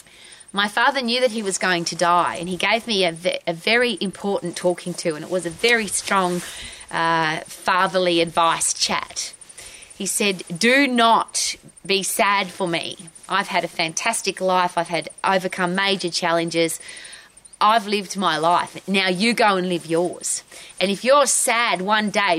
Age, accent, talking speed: 30-49, Australian, 170 wpm